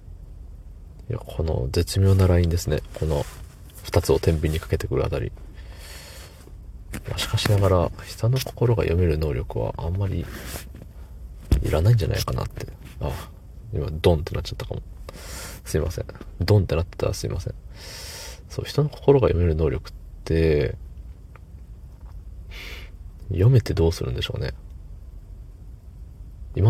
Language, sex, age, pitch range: Japanese, male, 40-59, 80-105 Hz